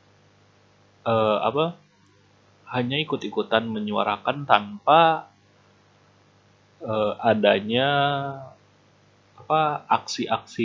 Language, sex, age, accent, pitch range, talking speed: Indonesian, male, 30-49, native, 100-115 Hz, 55 wpm